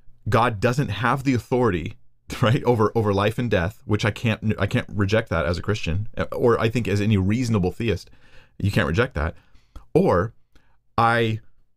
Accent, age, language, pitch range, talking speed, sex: American, 40-59, English, 95-120 Hz, 175 wpm, male